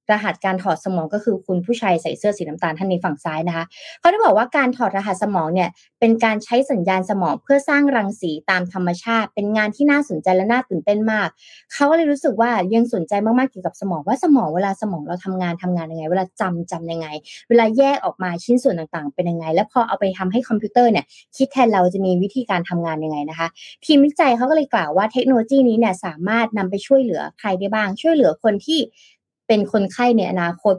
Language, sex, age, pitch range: Thai, female, 20-39, 180-240 Hz